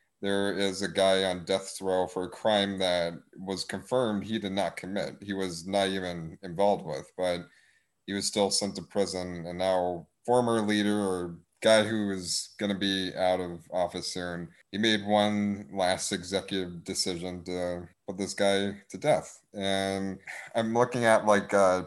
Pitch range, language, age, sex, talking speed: 90-105 Hz, English, 30-49, male, 175 wpm